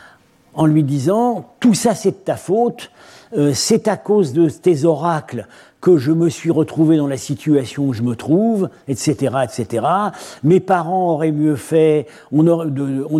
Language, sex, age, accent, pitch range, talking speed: French, male, 50-69, French, 135-185 Hz, 165 wpm